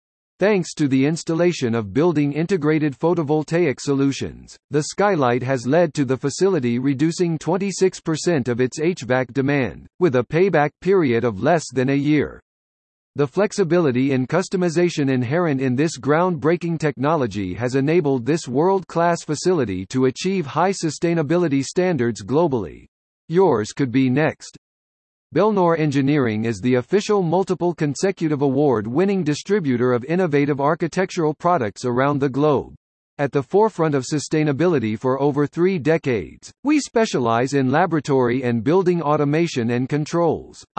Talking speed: 130 wpm